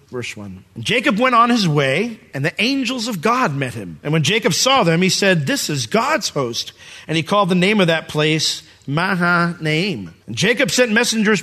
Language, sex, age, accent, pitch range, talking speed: English, male, 40-59, American, 155-235 Hz, 205 wpm